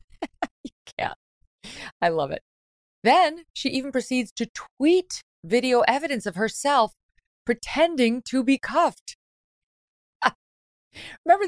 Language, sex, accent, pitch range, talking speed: English, female, American, 140-215 Hz, 105 wpm